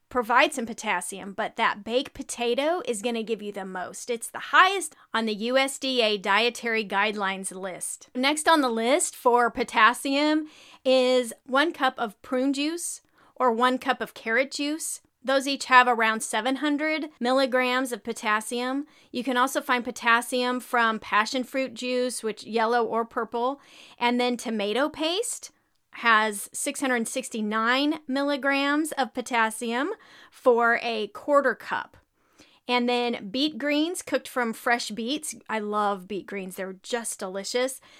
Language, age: English, 30-49